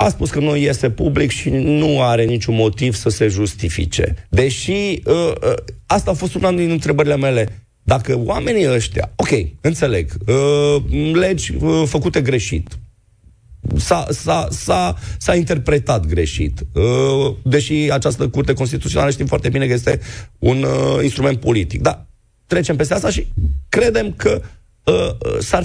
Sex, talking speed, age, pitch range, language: male, 145 wpm, 40-59, 110-160 Hz, Romanian